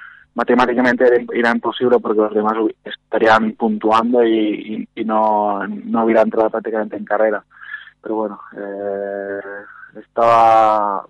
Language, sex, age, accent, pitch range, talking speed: Spanish, male, 20-39, Spanish, 105-120 Hz, 120 wpm